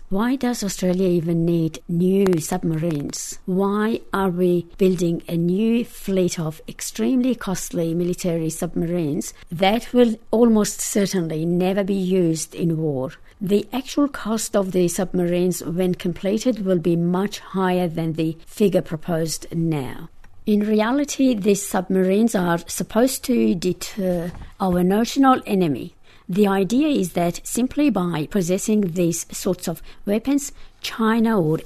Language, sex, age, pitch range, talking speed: English, female, 60-79, 175-215 Hz, 130 wpm